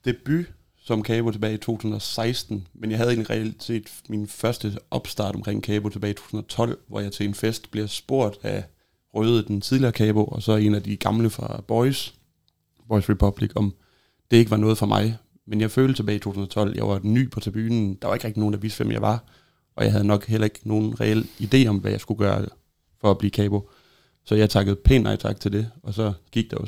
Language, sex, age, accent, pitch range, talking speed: Danish, male, 30-49, native, 100-115 Hz, 225 wpm